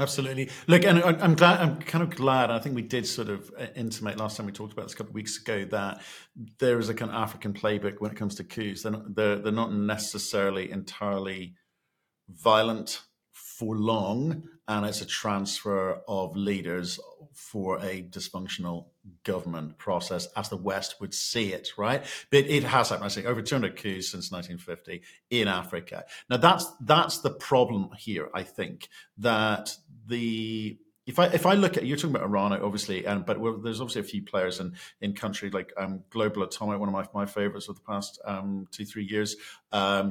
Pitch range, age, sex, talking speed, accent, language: 100-125 Hz, 50-69, male, 195 wpm, British, English